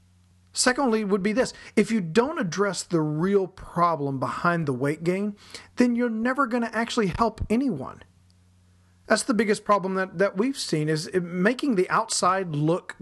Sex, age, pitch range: male, 40-59, 130-195 Hz